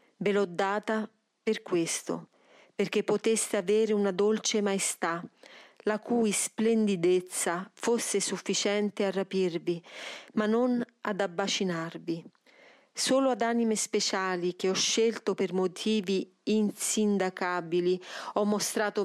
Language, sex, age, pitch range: Italian, female, 40-59, 185-220 Hz